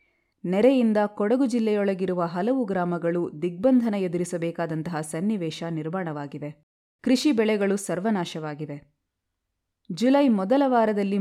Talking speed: 80 wpm